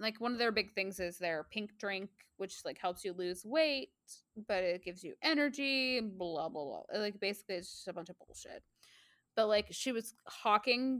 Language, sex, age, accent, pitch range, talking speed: English, female, 20-39, American, 185-240 Hz, 205 wpm